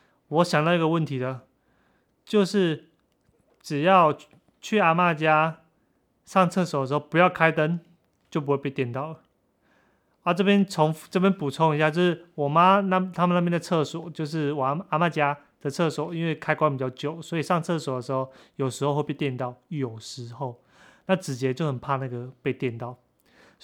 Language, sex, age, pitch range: Chinese, male, 30-49, 140-185 Hz